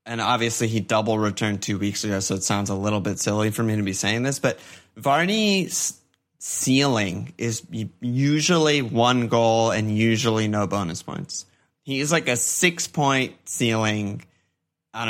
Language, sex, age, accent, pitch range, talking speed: English, male, 30-49, American, 105-125 Hz, 160 wpm